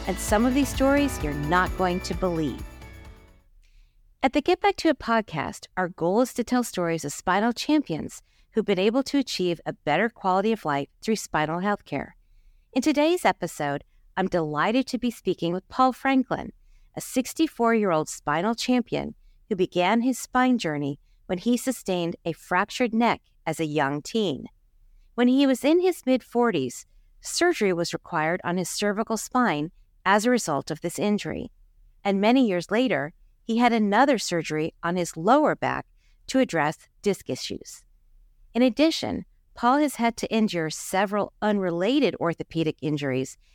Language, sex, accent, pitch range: English, female, American, 165-245 Hz